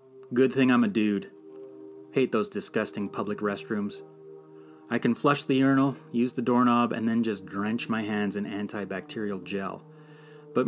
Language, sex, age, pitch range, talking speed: English, male, 30-49, 105-140 Hz, 155 wpm